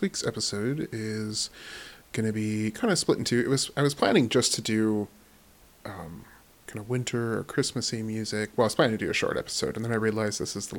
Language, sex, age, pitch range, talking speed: English, male, 30-49, 105-125 Hz, 225 wpm